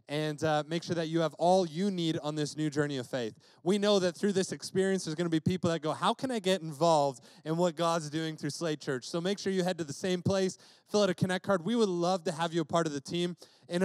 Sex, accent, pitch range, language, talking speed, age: male, American, 155-195 Hz, English, 290 wpm, 30-49